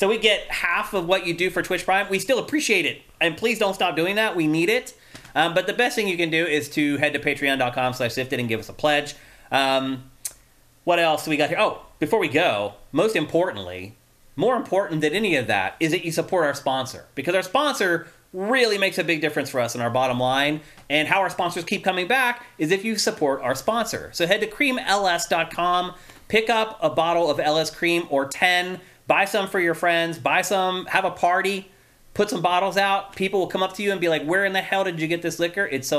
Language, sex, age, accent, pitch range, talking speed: English, male, 30-49, American, 140-185 Hz, 235 wpm